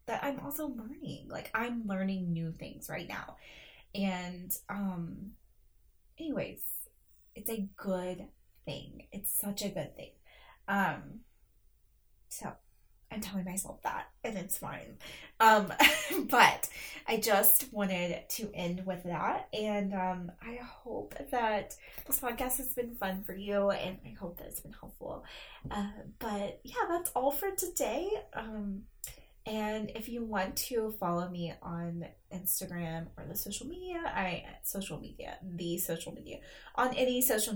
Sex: female